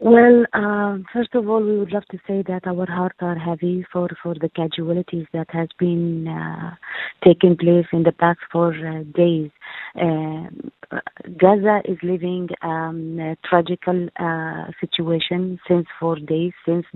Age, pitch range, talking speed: 30-49, 165-190 Hz, 155 wpm